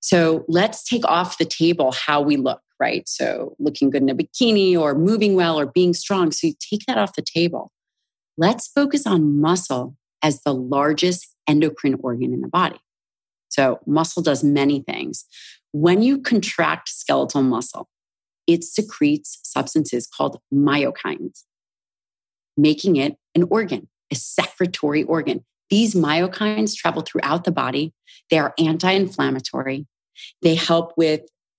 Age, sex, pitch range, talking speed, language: 30-49, female, 145-180 Hz, 140 wpm, English